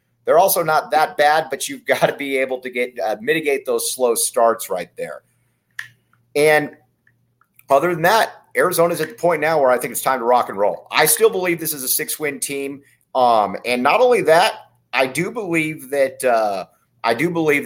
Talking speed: 205 wpm